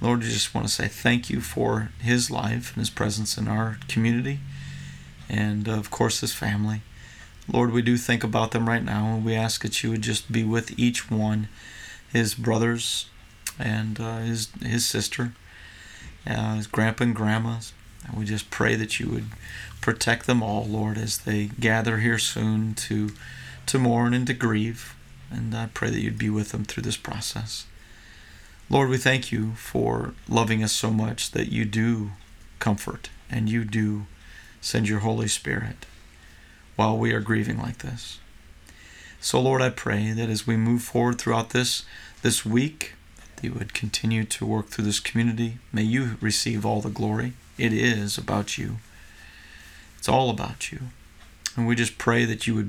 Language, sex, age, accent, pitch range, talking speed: English, male, 40-59, American, 105-115 Hz, 175 wpm